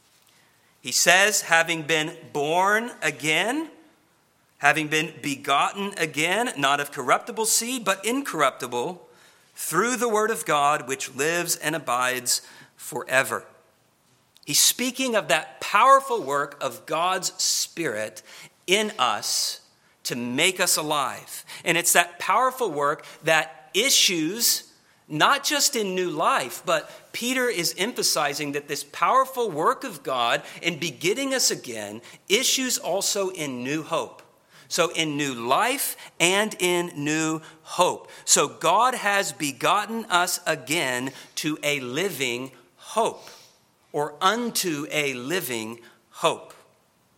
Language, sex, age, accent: English, male, 40-59, American